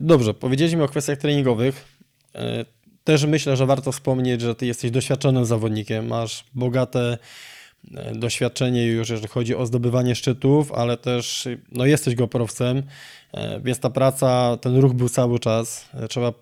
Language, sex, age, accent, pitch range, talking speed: Polish, male, 20-39, native, 120-135 Hz, 145 wpm